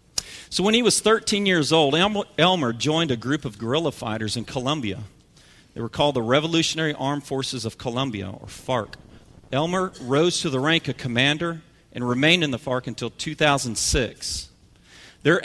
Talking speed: 165 wpm